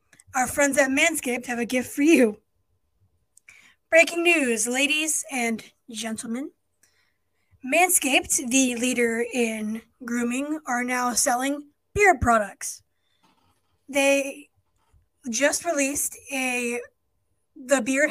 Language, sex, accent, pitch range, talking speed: English, female, American, 235-285 Hz, 100 wpm